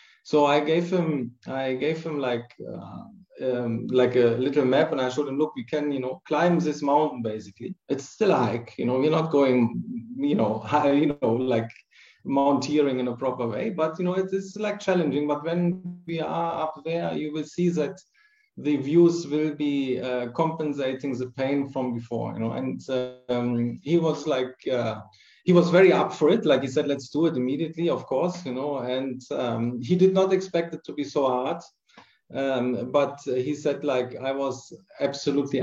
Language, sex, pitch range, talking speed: Spanish, male, 125-155 Hz, 200 wpm